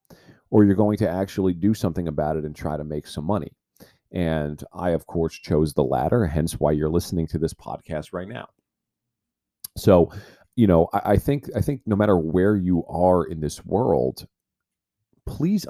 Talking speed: 185 wpm